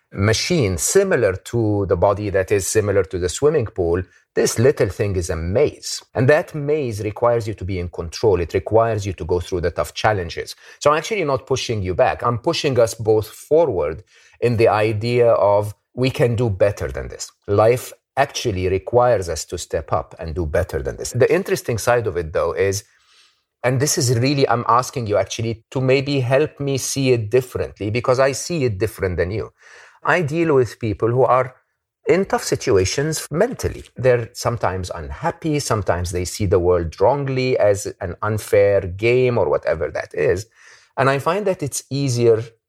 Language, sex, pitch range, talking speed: English, male, 100-135 Hz, 185 wpm